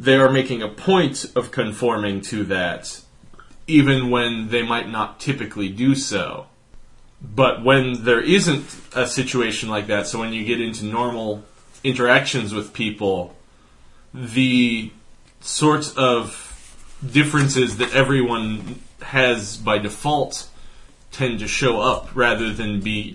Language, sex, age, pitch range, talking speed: English, male, 30-49, 105-130 Hz, 130 wpm